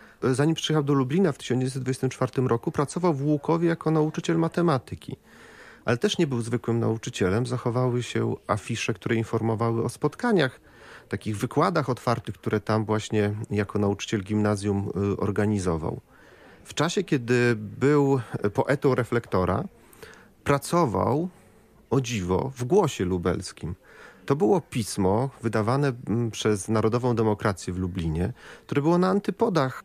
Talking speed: 125 wpm